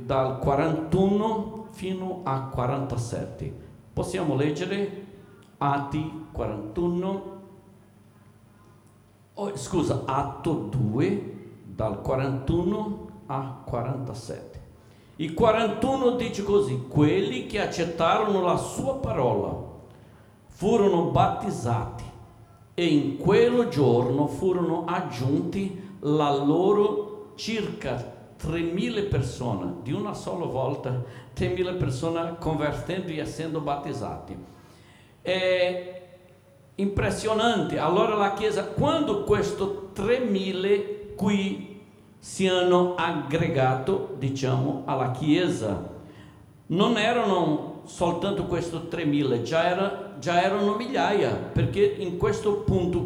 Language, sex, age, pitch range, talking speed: Italian, male, 60-79, 135-195 Hz, 90 wpm